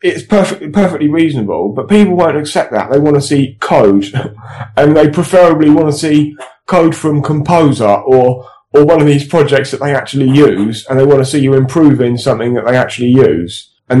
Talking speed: 195 wpm